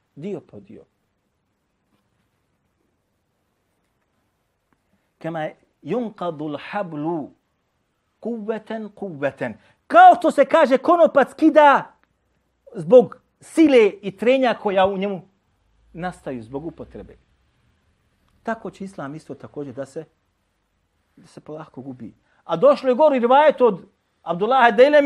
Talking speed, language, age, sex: 95 wpm, English, 40-59, male